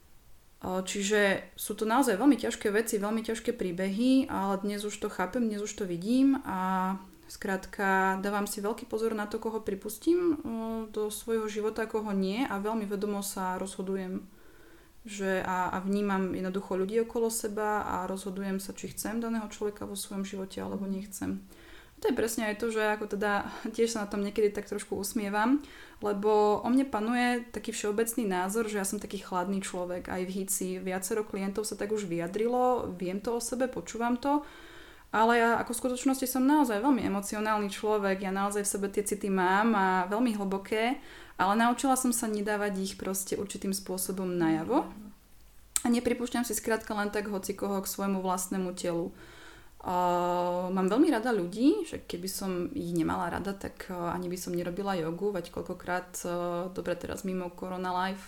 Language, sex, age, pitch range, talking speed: Slovak, female, 20-39, 185-225 Hz, 175 wpm